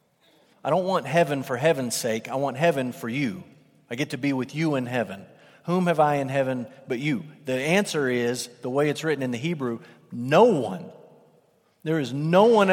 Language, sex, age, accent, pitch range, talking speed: English, male, 40-59, American, 120-165 Hz, 205 wpm